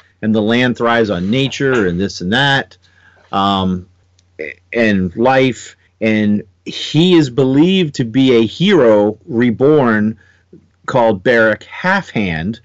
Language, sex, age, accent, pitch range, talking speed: English, male, 40-59, American, 95-135 Hz, 120 wpm